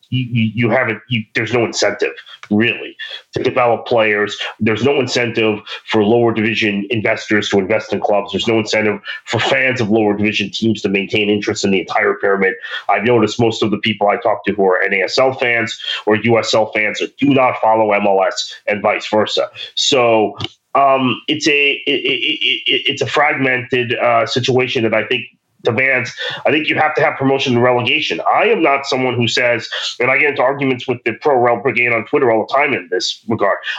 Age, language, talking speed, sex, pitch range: 30-49, English, 185 wpm, male, 110-140 Hz